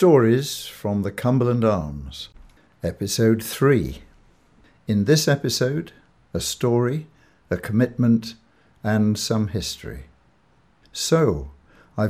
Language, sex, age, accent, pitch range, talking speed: English, male, 60-79, British, 100-120 Hz, 95 wpm